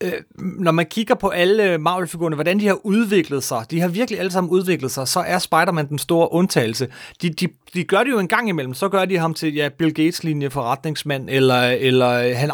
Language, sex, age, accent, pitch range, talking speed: Danish, male, 30-49, native, 145-190 Hz, 215 wpm